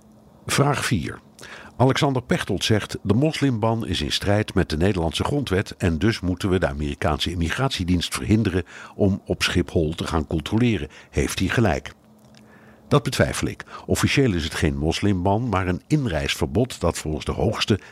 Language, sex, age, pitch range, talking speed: Dutch, male, 60-79, 85-110 Hz, 155 wpm